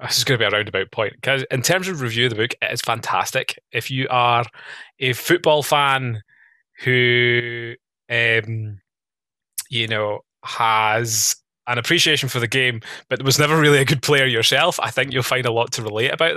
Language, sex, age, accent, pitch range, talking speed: English, male, 20-39, British, 110-135 Hz, 185 wpm